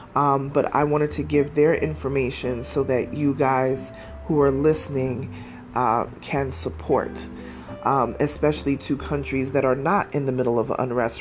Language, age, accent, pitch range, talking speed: English, 30-49, American, 125-145 Hz, 160 wpm